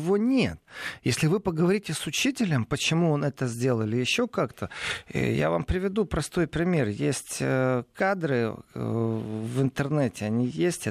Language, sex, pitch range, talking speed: Russian, male, 125-175 Hz, 130 wpm